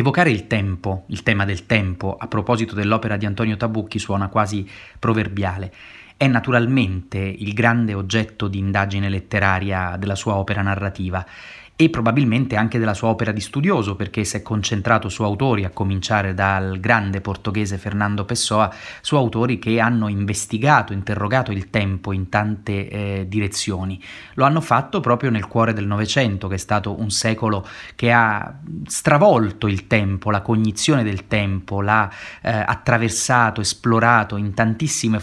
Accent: native